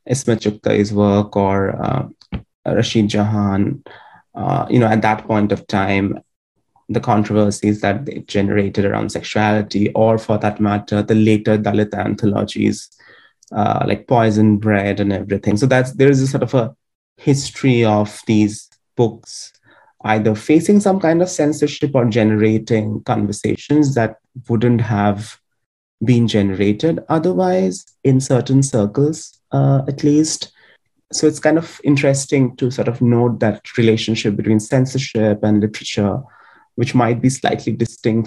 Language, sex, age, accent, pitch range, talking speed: English, male, 20-39, Indian, 105-130 Hz, 140 wpm